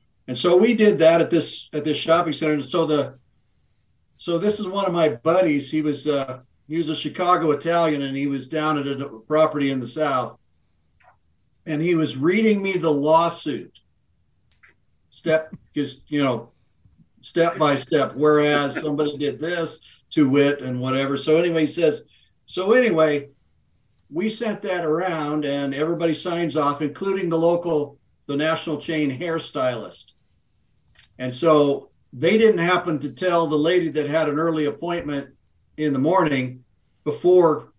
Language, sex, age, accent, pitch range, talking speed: English, male, 50-69, American, 140-165 Hz, 155 wpm